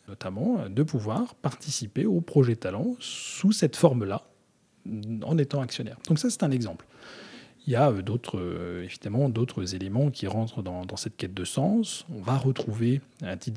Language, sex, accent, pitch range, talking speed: French, male, French, 105-145 Hz, 170 wpm